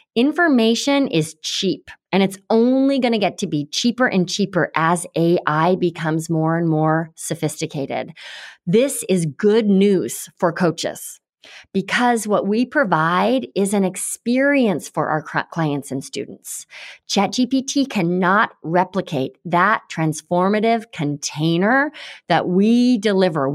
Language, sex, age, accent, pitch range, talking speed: English, female, 30-49, American, 175-240 Hz, 120 wpm